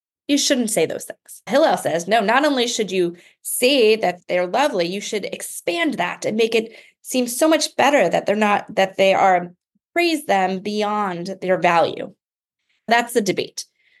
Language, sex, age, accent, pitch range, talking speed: English, female, 20-39, American, 195-300 Hz, 175 wpm